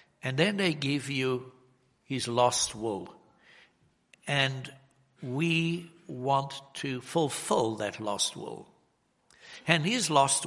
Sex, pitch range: male, 125-165 Hz